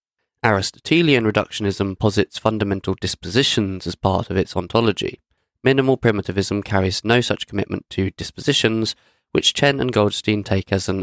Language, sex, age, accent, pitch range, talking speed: English, male, 20-39, British, 95-110 Hz, 135 wpm